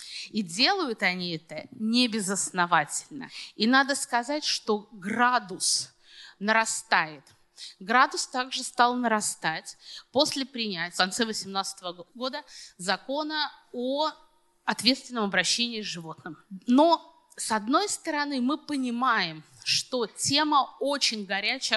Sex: female